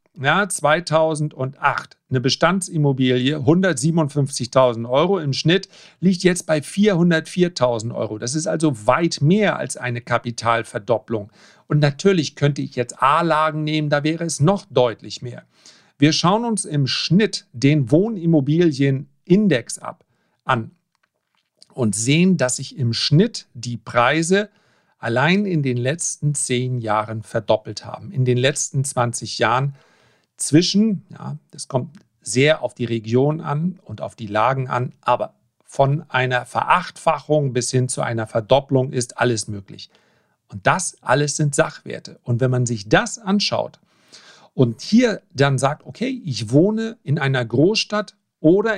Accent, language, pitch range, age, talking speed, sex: German, German, 125-170 Hz, 40-59, 135 wpm, male